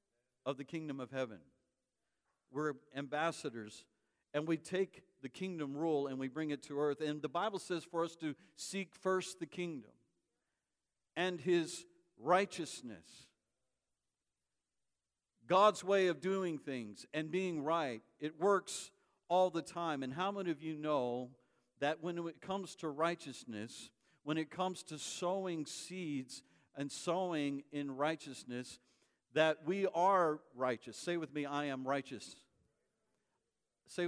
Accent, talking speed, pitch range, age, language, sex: American, 140 wpm, 135-175 Hz, 50-69, English, male